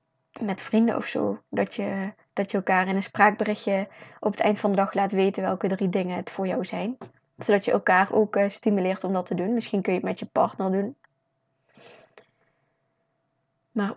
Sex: female